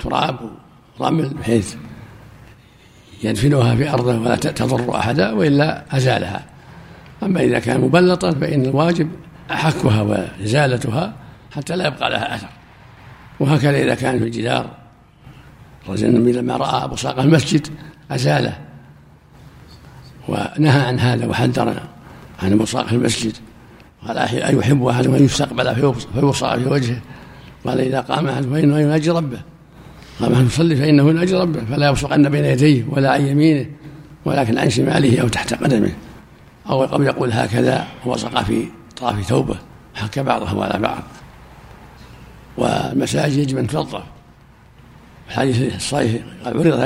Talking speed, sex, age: 125 wpm, male, 60-79